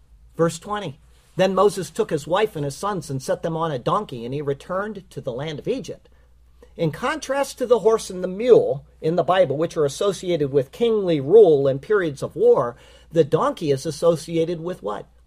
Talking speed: 200 wpm